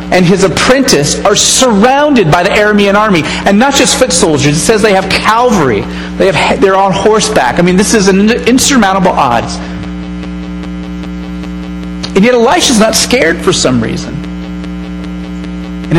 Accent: American